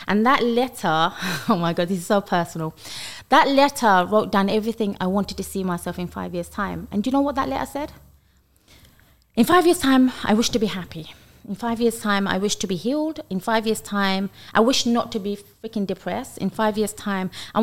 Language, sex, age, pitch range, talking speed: English, female, 20-39, 185-230 Hz, 225 wpm